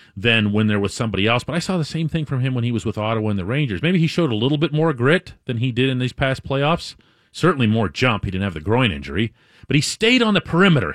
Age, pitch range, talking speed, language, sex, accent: 40-59, 130-185 Hz, 285 wpm, English, male, American